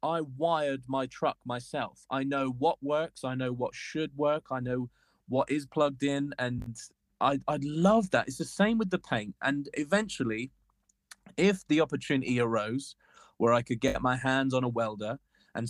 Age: 20-39